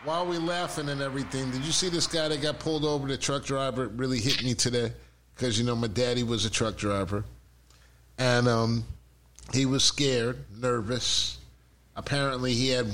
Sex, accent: male, American